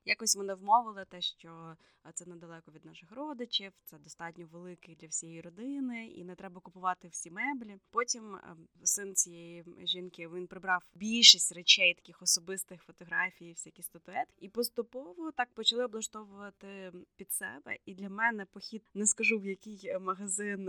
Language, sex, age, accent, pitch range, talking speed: Ukrainian, female, 20-39, native, 180-220 Hz, 150 wpm